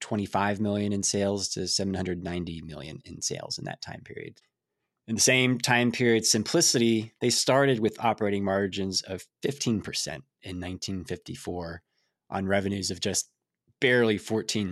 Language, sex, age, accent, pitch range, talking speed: English, male, 20-39, American, 100-120 Hz, 140 wpm